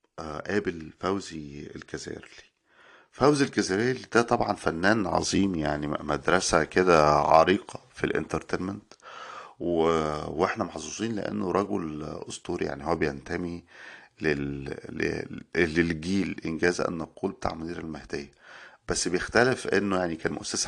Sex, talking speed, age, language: male, 105 wpm, 50-69, Arabic